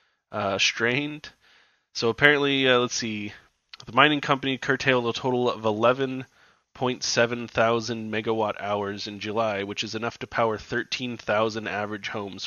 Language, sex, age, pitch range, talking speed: English, male, 20-39, 110-130 Hz, 135 wpm